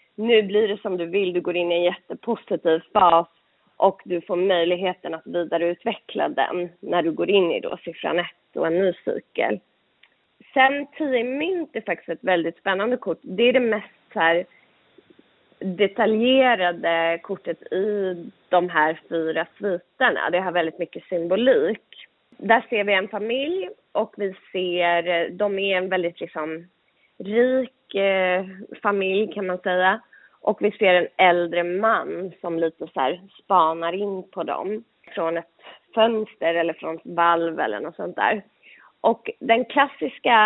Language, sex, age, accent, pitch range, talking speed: Swedish, female, 20-39, native, 175-230 Hz, 155 wpm